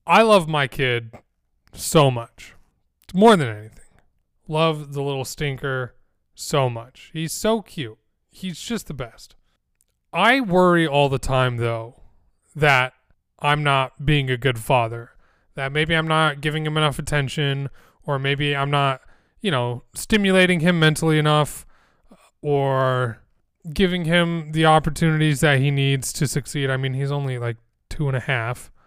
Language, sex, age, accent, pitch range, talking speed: English, male, 20-39, American, 130-160 Hz, 150 wpm